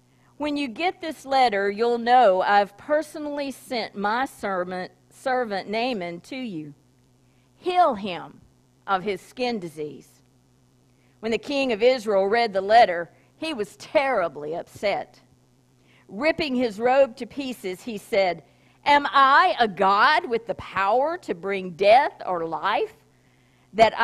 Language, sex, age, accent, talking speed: English, female, 50-69, American, 135 wpm